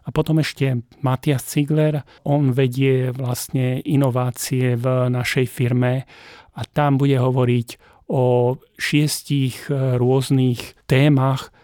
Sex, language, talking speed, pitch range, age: male, Slovak, 105 wpm, 130-145 Hz, 40-59